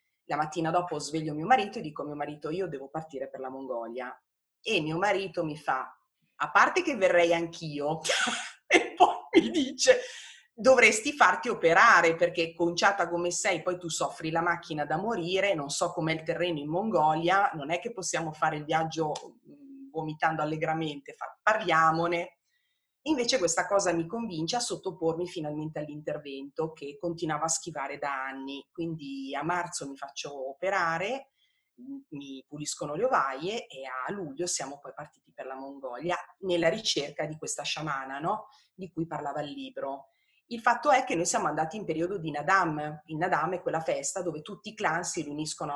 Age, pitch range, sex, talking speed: 30-49, 150-195 Hz, female, 170 wpm